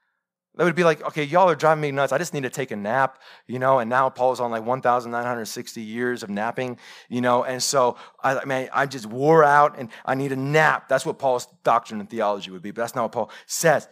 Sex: male